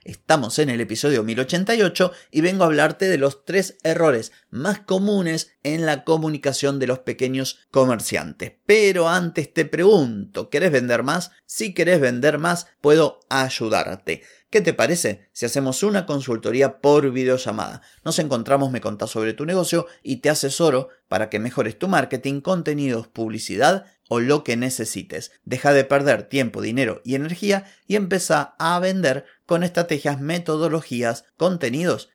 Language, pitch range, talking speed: Spanish, 125-165 Hz, 150 wpm